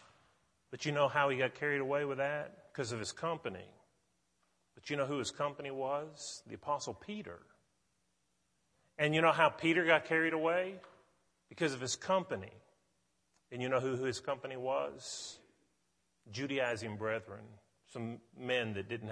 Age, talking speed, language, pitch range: 40-59, 155 wpm, English, 110-140 Hz